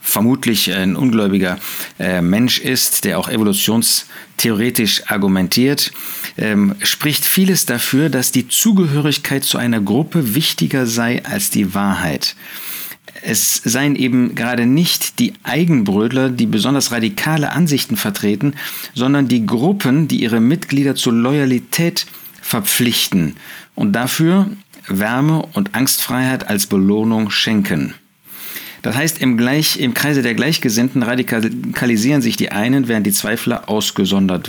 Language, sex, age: German, male, 50-69